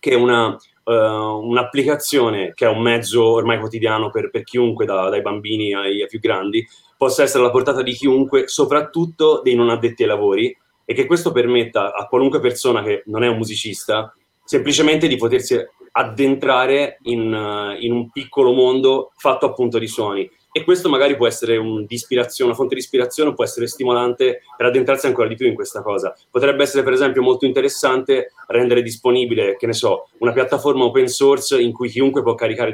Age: 30-49